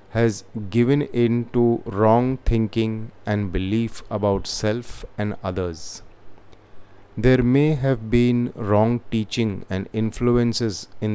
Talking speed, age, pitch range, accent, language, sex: 115 wpm, 30-49, 100-120 Hz, native, Hindi, male